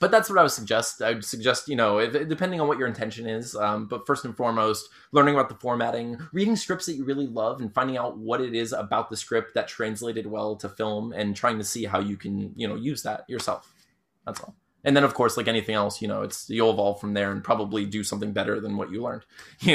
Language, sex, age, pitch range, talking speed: English, male, 20-39, 110-160 Hz, 255 wpm